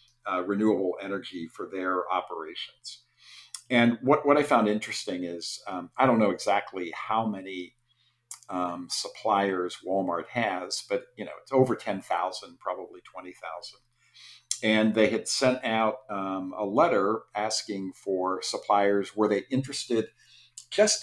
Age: 50-69